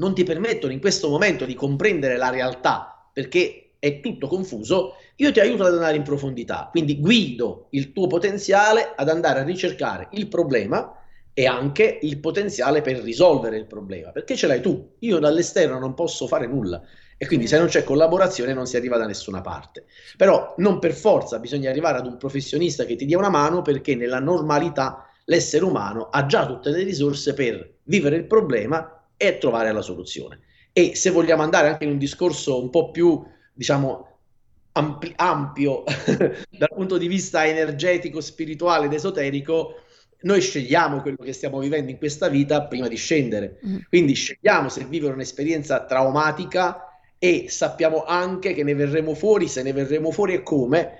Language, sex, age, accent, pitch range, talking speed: Italian, male, 30-49, native, 140-180 Hz, 175 wpm